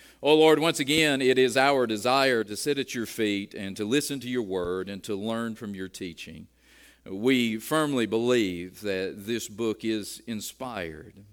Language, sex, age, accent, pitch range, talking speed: English, male, 50-69, American, 100-130 Hz, 175 wpm